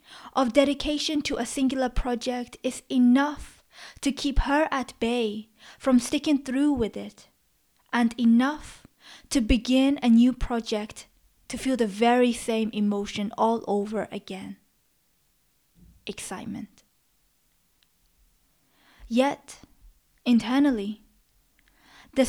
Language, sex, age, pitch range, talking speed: English, female, 20-39, 225-260 Hz, 100 wpm